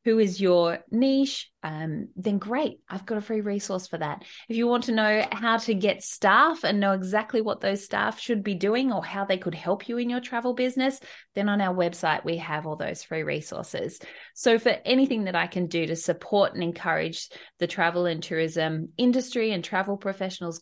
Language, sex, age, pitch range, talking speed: English, female, 20-39, 175-230 Hz, 205 wpm